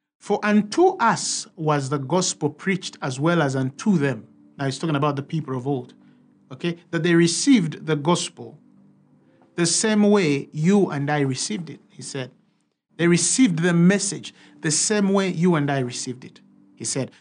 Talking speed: 175 wpm